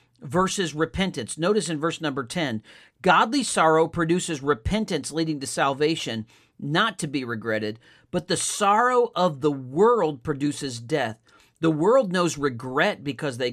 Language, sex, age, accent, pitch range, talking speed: English, male, 50-69, American, 145-200 Hz, 140 wpm